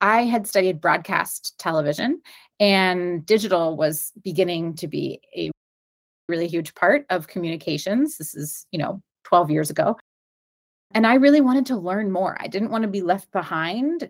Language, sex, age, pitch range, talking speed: English, female, 30-49, 175-225 Hz, 160 wpm